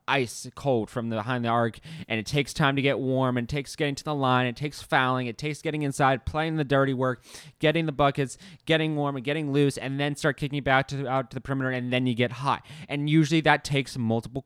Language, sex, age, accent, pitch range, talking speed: English, male, 20-39, American, 130-155 Hz, 250 wpm